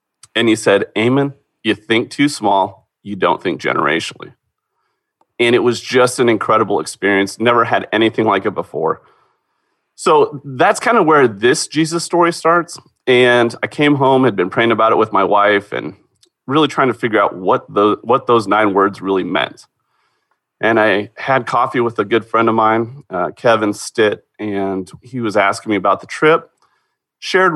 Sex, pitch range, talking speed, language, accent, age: male, 105-130 Hz, 175 wpm, English, American, 30-49